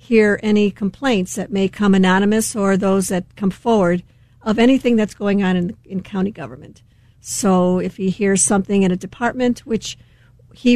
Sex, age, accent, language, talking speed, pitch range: female, 50-69, American, English, 175 wpm, 185-210 Hz